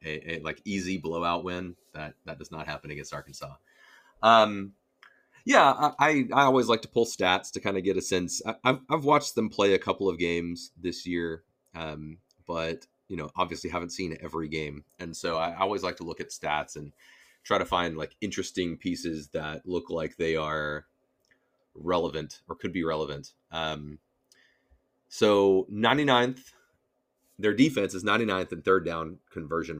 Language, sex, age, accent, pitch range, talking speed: English, male, 30-49, American, 80-100 Hz, 175 wpm